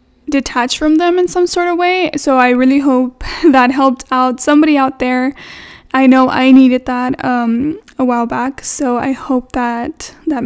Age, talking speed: 10-29, 185 wpm